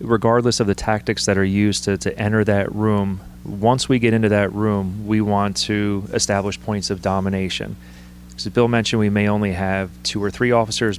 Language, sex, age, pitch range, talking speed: English, male, 30-49, 95-110 Hz, 195 wpm